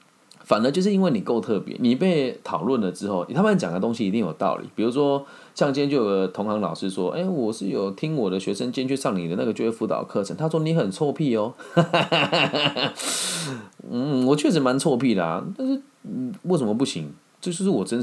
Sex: male